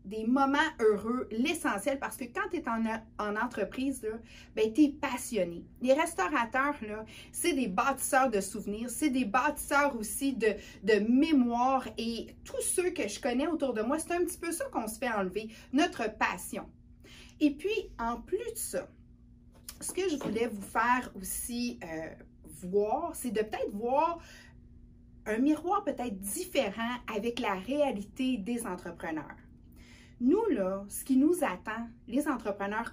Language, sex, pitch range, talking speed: French, female, 205-280 Hz, 155 wpm